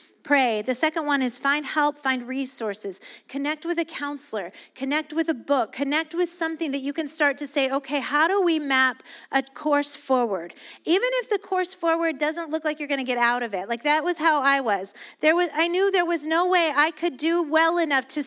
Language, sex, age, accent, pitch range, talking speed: English, female, 40-59, American, 240-315 Hz, 225 wpm